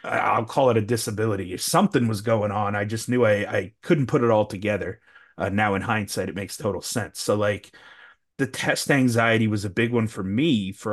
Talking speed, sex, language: 220 wpm, male, English